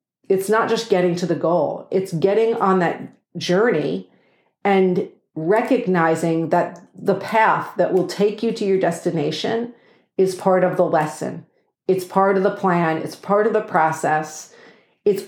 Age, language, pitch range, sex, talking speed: 50-69, English, 165-200 Hz, female, 155 wpm